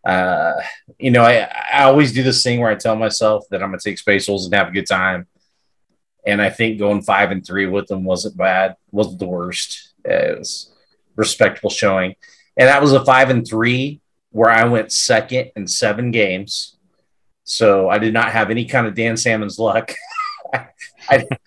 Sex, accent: male, American